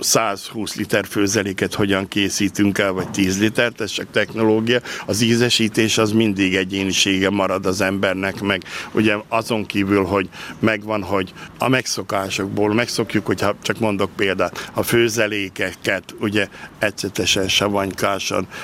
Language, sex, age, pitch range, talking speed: Hungarian, male, 60-79, 100-115 Hz, 125 wpm